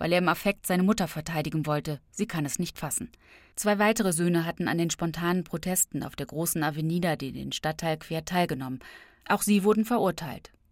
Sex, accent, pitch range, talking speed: female, German, 155-200 Hz, 190 wpm